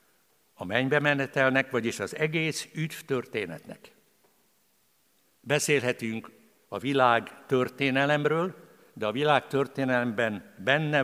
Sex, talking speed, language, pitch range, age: male, 80 wpm, Hungarian, 130-160 Hz, 60-79